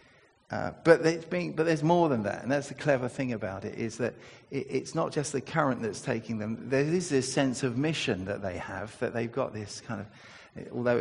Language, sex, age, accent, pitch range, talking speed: English, male, 50-69, British, 115-150 Hz, 235 wpm